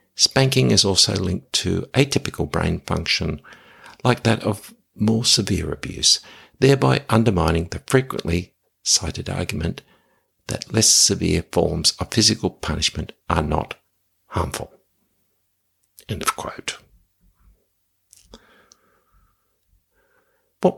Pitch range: 90-115 Hz